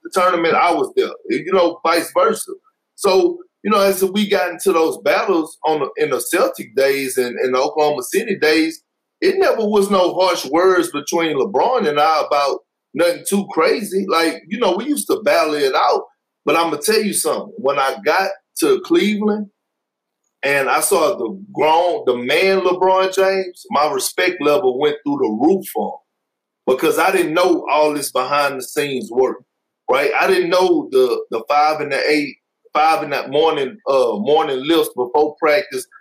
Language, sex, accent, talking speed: English, male, American, 185 wpm